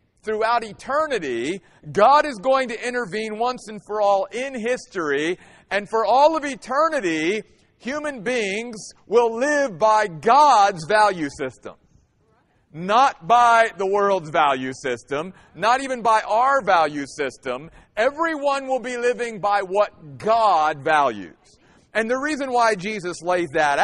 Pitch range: 175-245 Hz